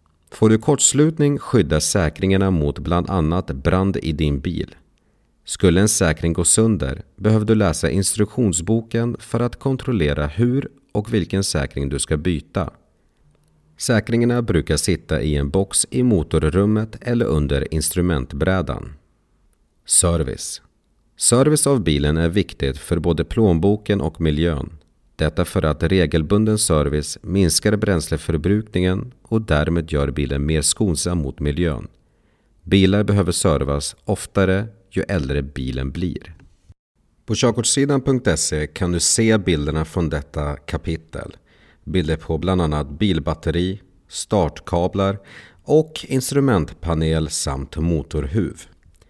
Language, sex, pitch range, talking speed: Swedish, male, 75-105 Hz, 115 wpm